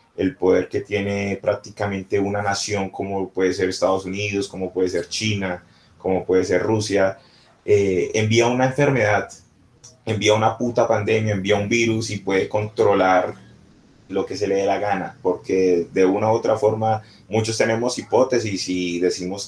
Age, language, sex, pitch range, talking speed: 30-49, Spanish, male, 95-110 Hz, 160 wpm